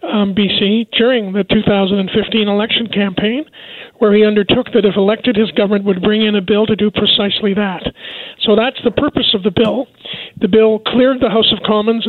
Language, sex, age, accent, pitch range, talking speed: English, male, 50-69, American, 210-235 Hz, 190 wpm